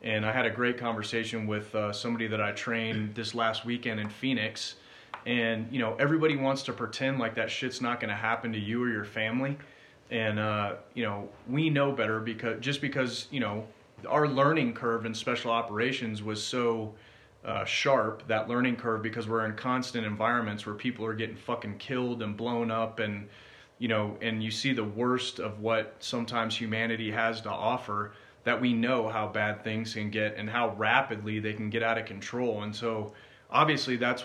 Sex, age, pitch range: male, 30-49, 110-125 Hz